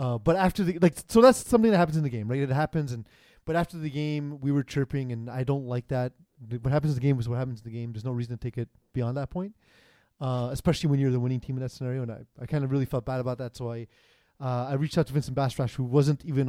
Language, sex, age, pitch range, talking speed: English, male, 20-39, 120-150 Hz, 300 wpm